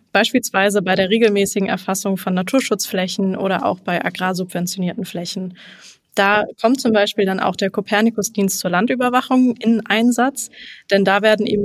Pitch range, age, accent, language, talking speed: 190-215 Hz, 20-39, German, German, 150 wpm